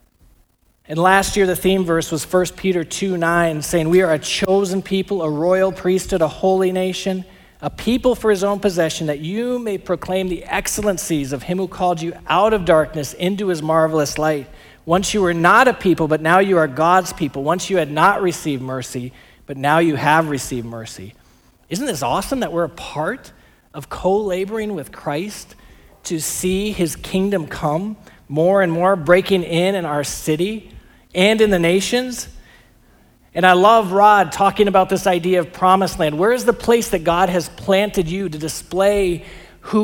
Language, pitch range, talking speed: English, 165-210 Hz, 185 wpm